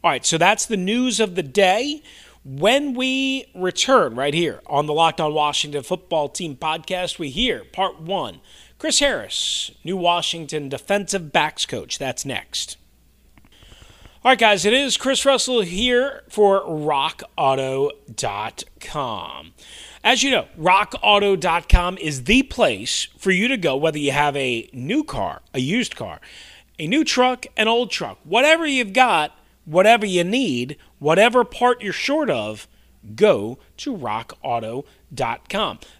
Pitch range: 150-225 Hz